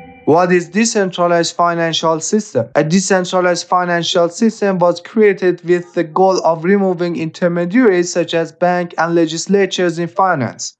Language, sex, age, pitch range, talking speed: English, male, 20-39, 170-190 Hz, 135 wpm